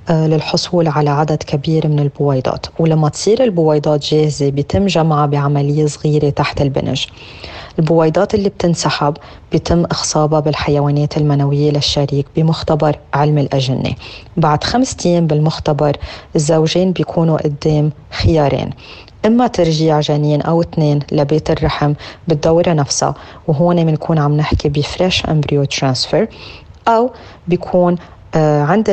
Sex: female